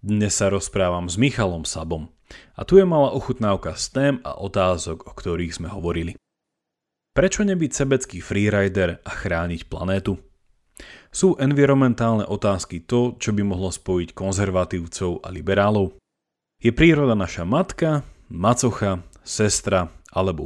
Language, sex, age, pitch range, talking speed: Slovak, male, 30-49, 90-125 Hz, 130 wpm